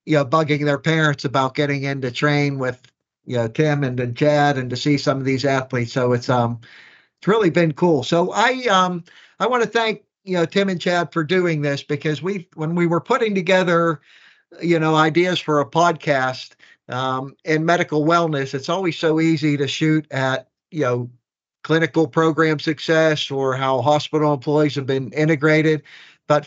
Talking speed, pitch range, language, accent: 190 wpm, 135-160 Hz, English, American